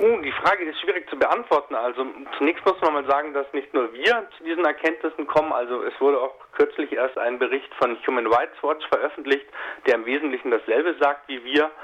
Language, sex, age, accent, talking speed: German, male, 40-59, German, 205 wpm